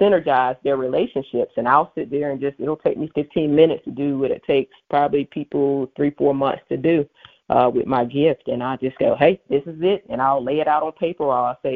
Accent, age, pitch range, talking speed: American, 30-49, 135-155 Hz, 250 wpm